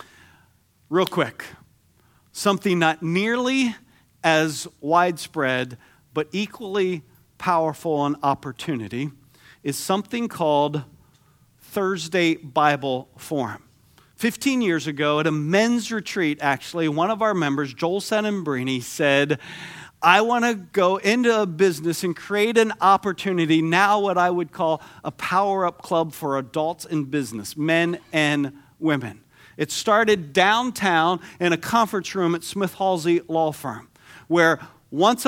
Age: 50-69